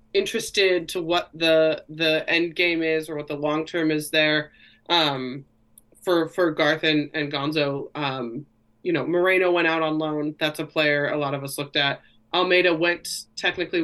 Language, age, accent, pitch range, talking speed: English, 20-39, American, 155-175 Hz, 180 wpm